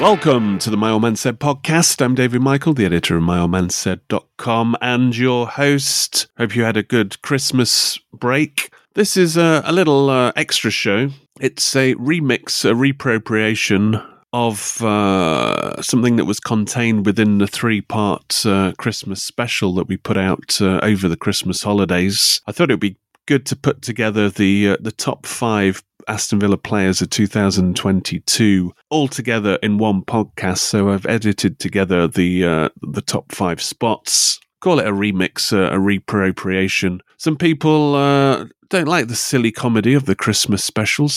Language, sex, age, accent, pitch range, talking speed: English, male, 30-49, British, 95-130 Hz, 165 wpm